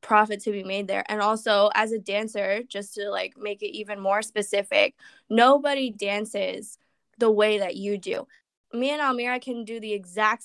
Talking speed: 185 wpm